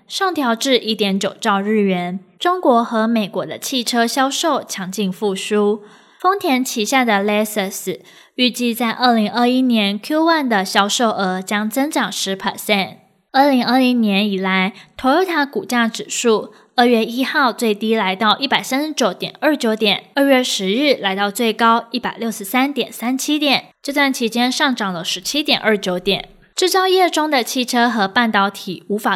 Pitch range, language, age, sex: 200-255 Hz, Chinese, 10-29, female